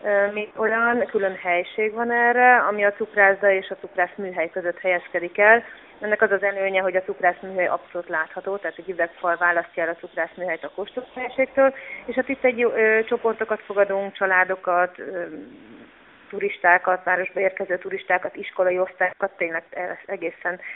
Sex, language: female, Hungarian